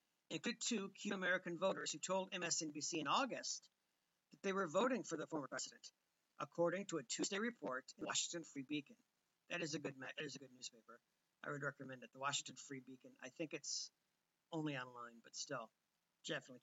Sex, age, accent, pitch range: male, 50-69, American, 150-190 Hz